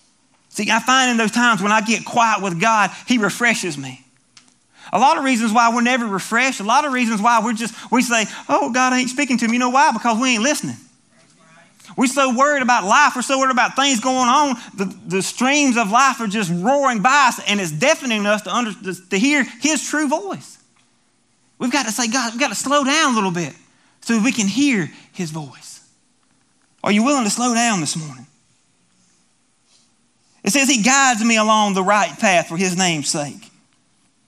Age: 30-49